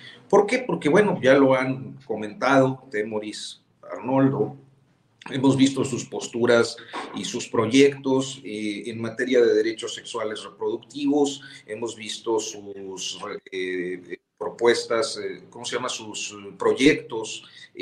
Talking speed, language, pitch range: 110 wpm, Spanish, 115-150 Hz